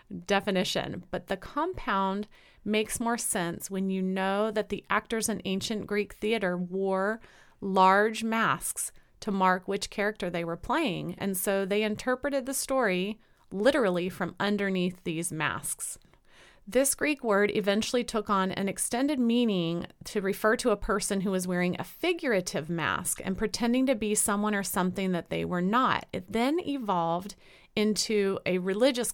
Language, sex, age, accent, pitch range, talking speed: English, female, 30-49, American, 185-225 Hz, 155 wpm